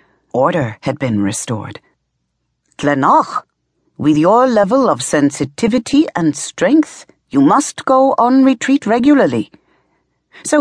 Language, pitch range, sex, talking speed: English, 135-230 Hz, female, 105 wpm